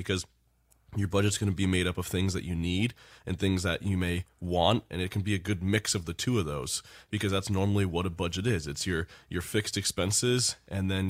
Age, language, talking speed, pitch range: 20-39, English, 240 wpm, 90-110 Hz